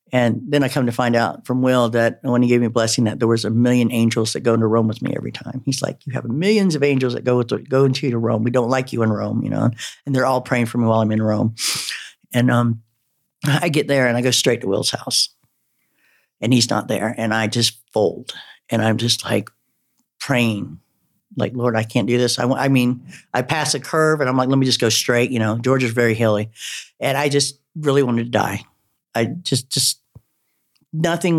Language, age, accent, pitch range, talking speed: English, 50-69, American, 115-135 Hz, 240 wpm